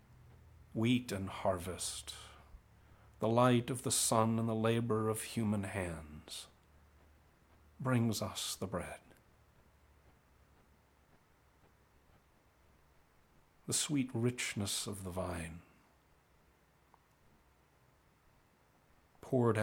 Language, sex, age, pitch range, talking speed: English, male, 60-79, 85-115 Hz, 75 wpm